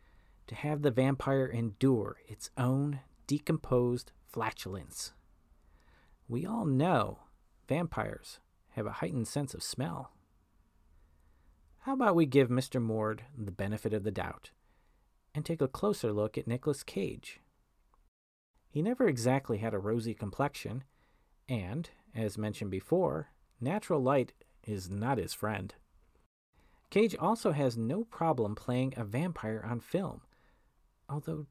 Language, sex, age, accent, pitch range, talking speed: English, male, 40-59, American, 105-145 Hz, 125 wpm